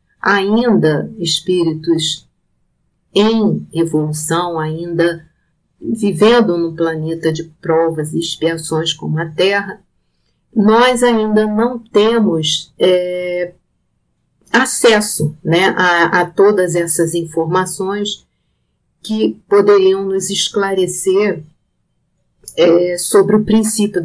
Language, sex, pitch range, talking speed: Portuguese, female, 165-200 Hz, 80 wpm